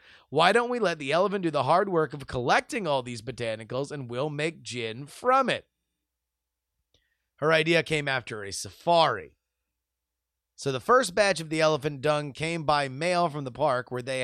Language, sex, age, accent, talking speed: English, male, 30-49, American, 180 wpm